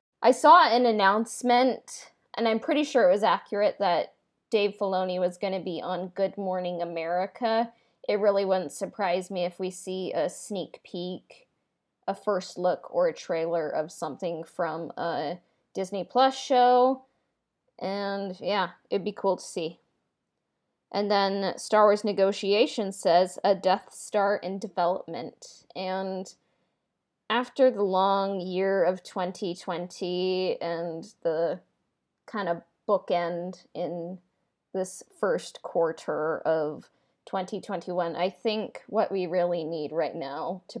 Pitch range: 180-225 Hz